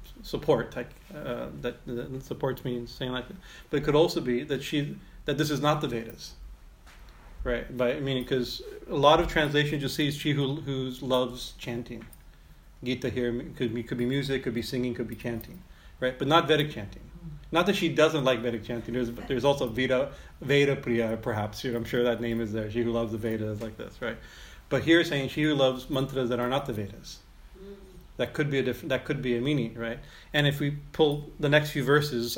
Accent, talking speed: American, 220 wpm